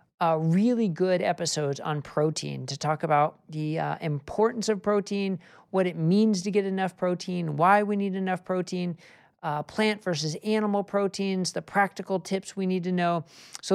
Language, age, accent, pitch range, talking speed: English, 40-59, American, 160-205 Hz, 170 wpm